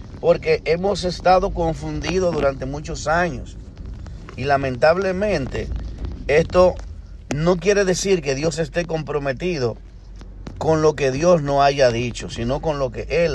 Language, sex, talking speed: Spanish, male, 130 wpm